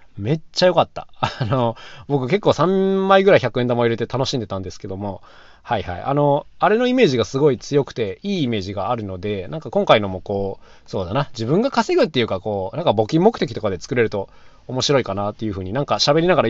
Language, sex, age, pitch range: Japanese, male, 20-39, 105-150 Hz